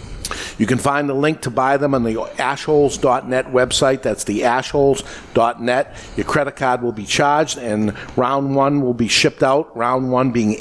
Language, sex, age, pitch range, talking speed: English, male, 50-69, 125-150 Hz, 175 wpm